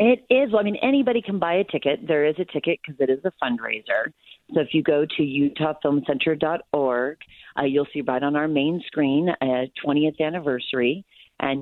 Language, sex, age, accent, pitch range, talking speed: English, female, 40-59, American, 140-175 Hz, 195 wpm